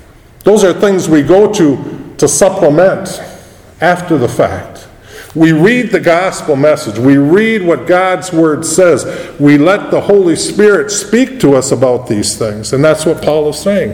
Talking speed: 170 wpm